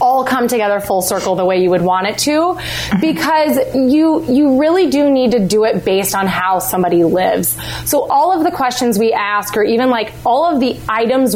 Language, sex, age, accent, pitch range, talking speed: English, female, 20-39, American, 200-270 Hz, 210 wpm